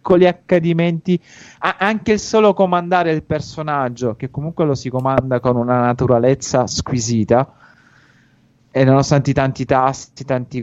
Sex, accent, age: male, native, 30-49